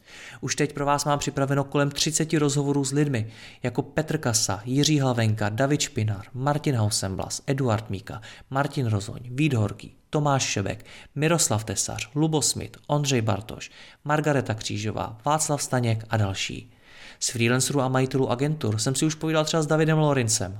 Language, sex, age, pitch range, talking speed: Czech, male, 30-49, 110-145 Hz, 150 wpm